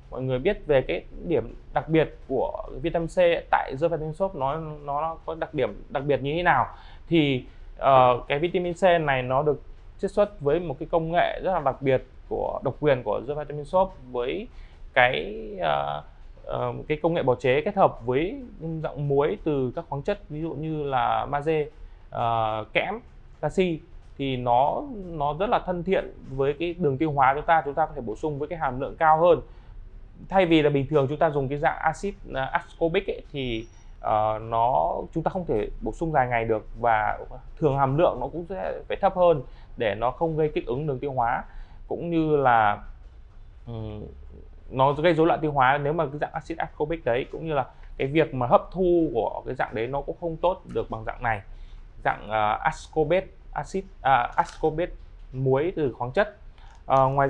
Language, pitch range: Vietnamese, 125-170 Hz